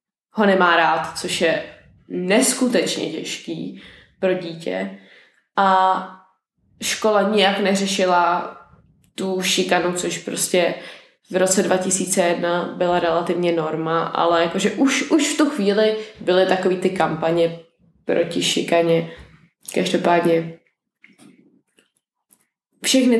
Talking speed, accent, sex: 100 wpm, native, female